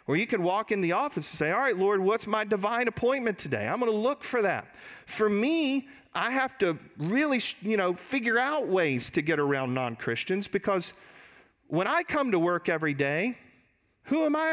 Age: 40-59